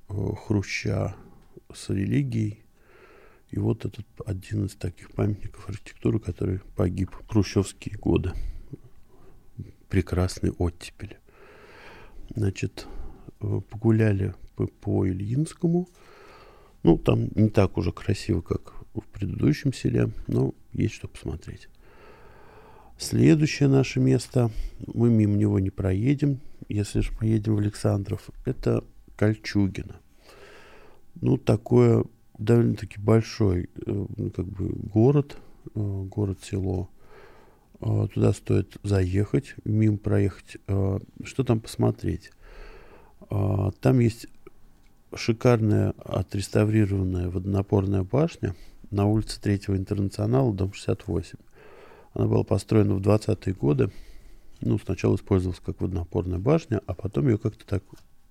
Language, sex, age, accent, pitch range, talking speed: Russian, male, 50-69, native, 95-115 Hz, 105 wpm